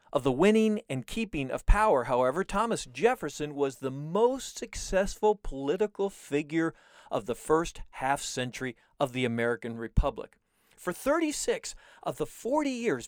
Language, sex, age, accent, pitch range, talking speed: English, male, 40-59, American, 130-195 Hz, 140 wpm